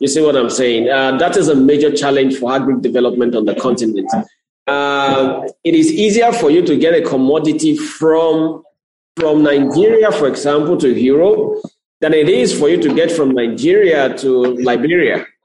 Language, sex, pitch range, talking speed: English, male, 130-175 Hz, 175 wpm